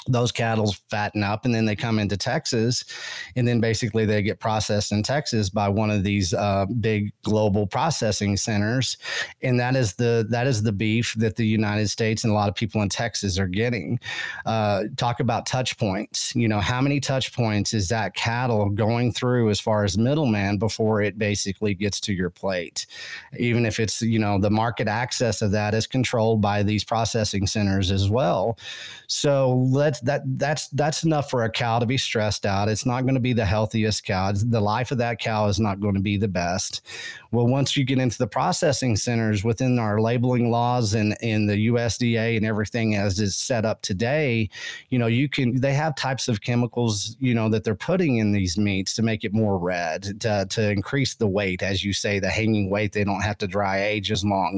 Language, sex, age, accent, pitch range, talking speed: English, male, 30-49, American, 105-120 Hz, 210 wpm